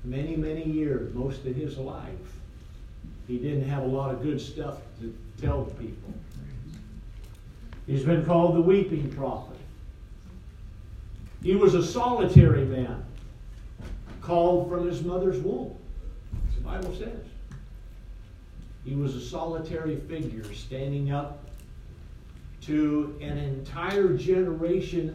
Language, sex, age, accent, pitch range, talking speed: English, male, 50-69, American, 110-165 Hz, 115 wpm